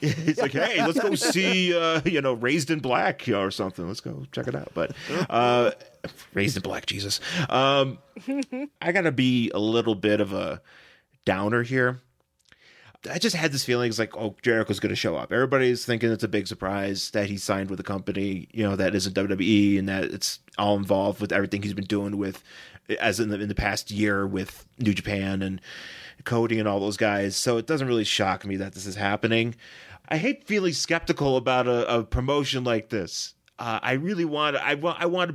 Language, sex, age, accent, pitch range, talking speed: English, male, 30-49, American, 100-130 Hz, 205 wpm